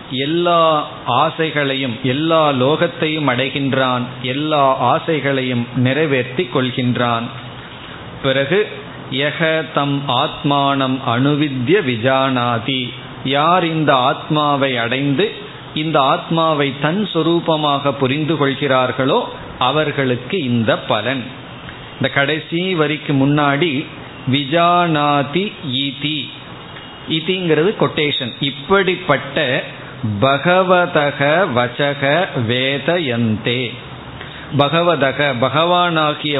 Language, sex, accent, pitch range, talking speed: Tamil, male, native, 130-155 Hz, 65 wpm